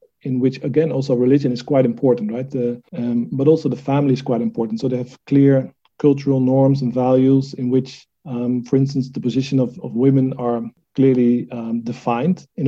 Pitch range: 120-140 Hz